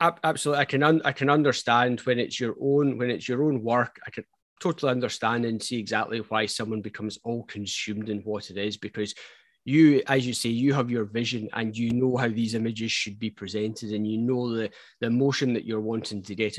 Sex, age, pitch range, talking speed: male, 20-39, 110-125 Hz, 220 wpm